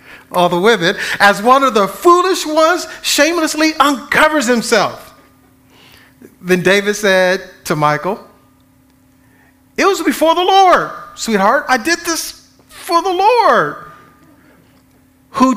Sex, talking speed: male, 115 wpm